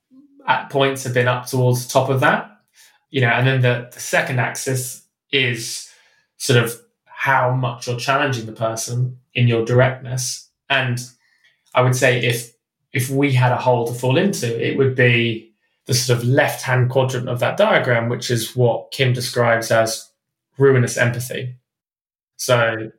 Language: English